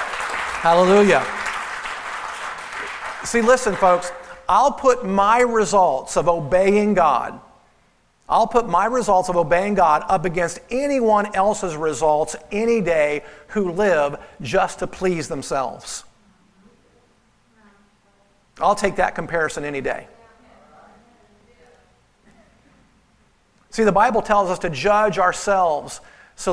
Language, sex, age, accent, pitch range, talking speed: English, male, 50-69, American, 165-210 Hz, 105 wpm